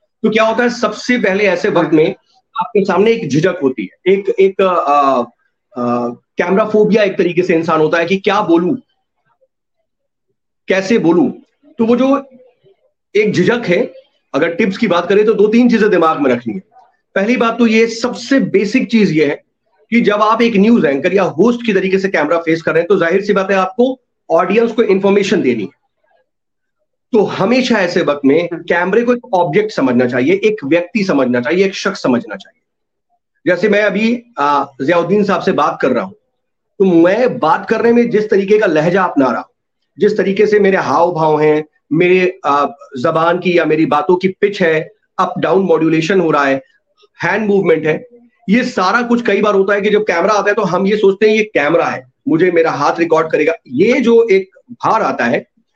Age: 40-59